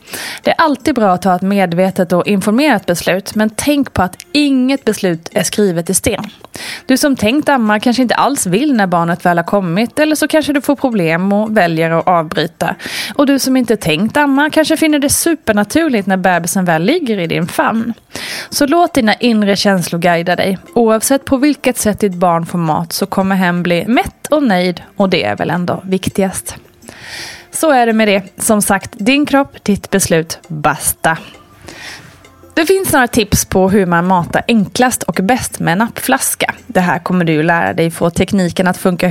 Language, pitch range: Swedish, 180-260 Hz